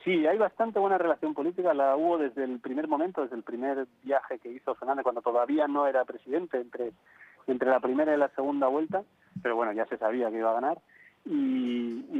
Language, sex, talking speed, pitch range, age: Spanish, male, 210 wpm, 120-150 Hz, 30-49